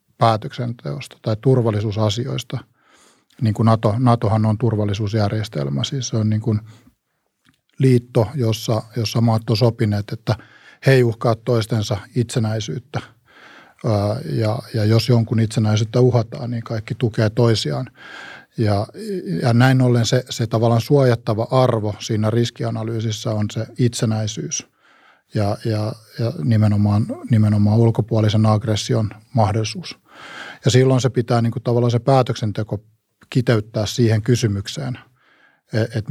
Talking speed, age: 115 wpm, 50-69